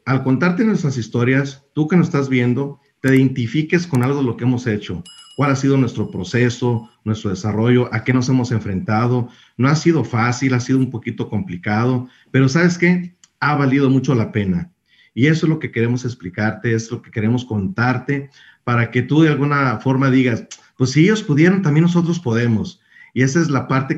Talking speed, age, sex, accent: 195 wpm, 40-59, male, Mexican